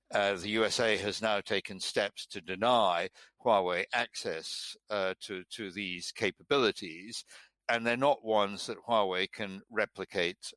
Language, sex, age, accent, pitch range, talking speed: English, male, 60-79, British, 100-115 Hz, 135 wpm